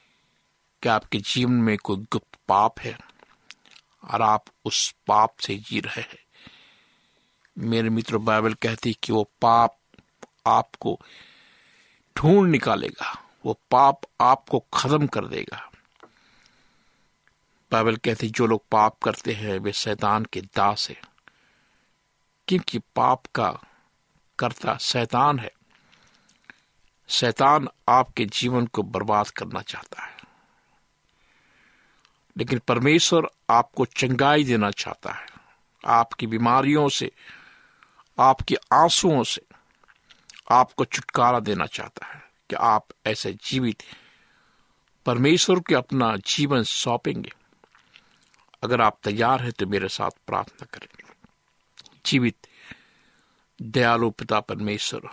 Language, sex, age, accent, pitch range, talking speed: Hindi, male, 50-69, native, 110-135 Hz, 105 wpm